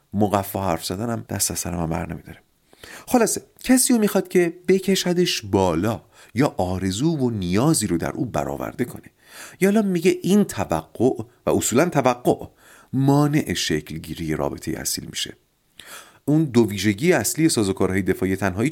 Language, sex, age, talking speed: Persian, male, 40-59, 140 wpm